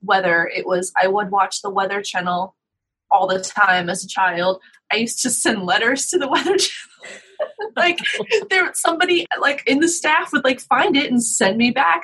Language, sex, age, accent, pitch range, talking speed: English, female, 20-39, American, 195-250 Hz, 200 wpm